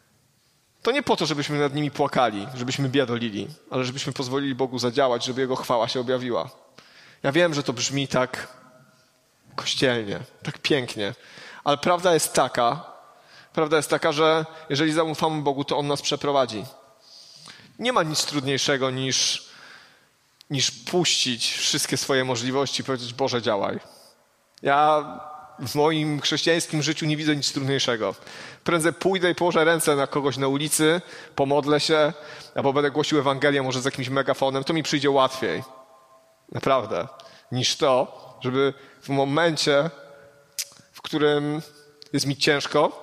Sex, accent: male, native